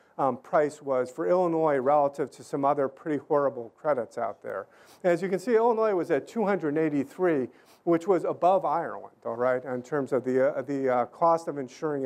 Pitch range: 130-165 Hz